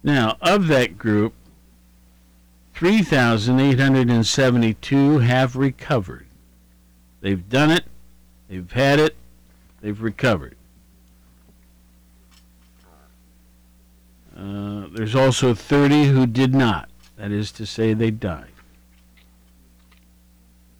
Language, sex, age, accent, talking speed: English, male, 60-79, American, 80 wpm